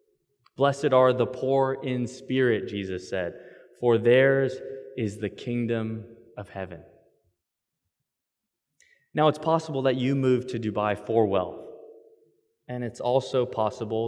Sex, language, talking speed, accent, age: male, English, 125 wpm, American, 20-39